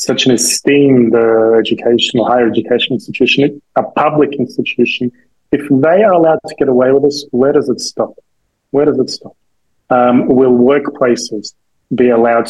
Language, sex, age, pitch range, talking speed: English, male, 30-49, 115-130 Hz, 160 wpm